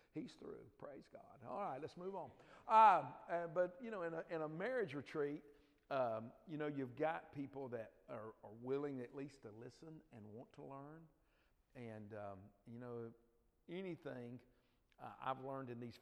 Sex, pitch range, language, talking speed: male, 110-140 Hz, English, 180 wpm